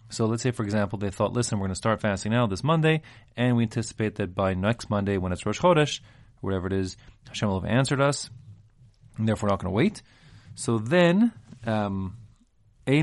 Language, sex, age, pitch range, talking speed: English, male, 30-49, 100-125 Hz, 185 wpm